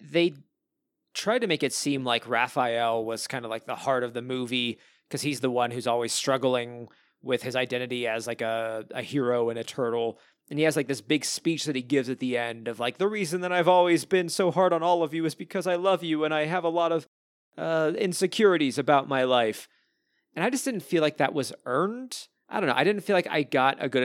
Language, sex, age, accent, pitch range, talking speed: English, male, 30-49, American, 120-165 Hz, 245 wpm